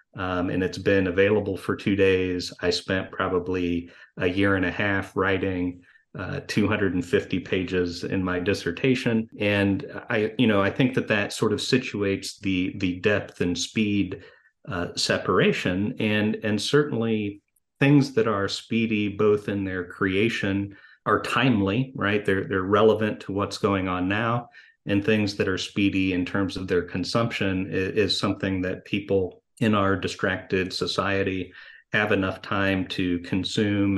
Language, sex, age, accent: English, male, 40-59, American